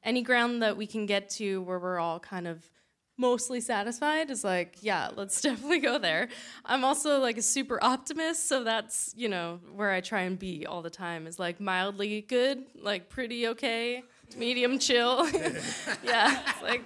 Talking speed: 180 wpm